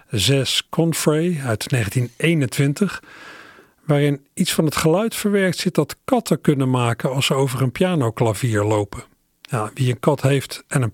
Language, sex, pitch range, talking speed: Dutch, male, 115-145 Hz, 150 wpm